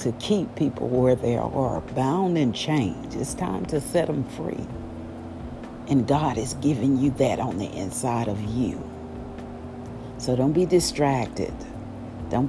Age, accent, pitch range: 50-69, American, 105-130 Hz